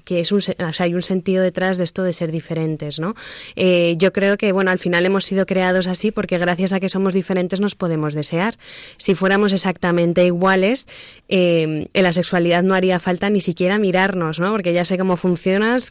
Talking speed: 210 wpm